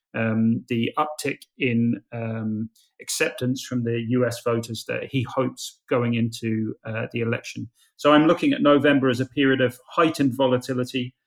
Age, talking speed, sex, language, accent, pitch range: 30-49, 155 wpm, male, English, British, 120-145 Hz